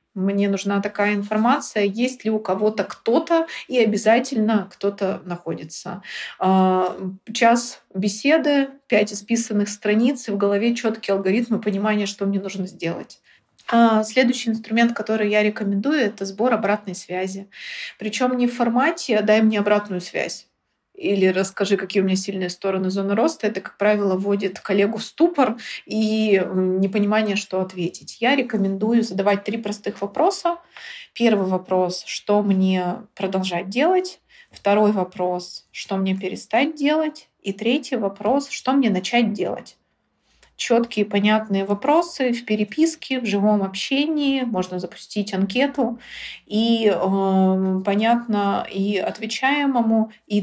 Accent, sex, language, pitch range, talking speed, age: native, female, Russian, 195-240 Hz, 130 wpm, 30-49